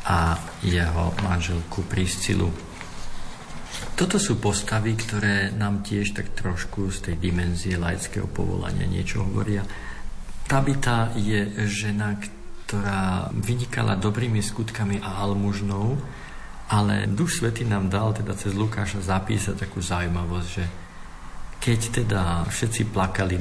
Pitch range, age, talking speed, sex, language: 95-110 Hz, 50-69, 115 wpm, male, Slovak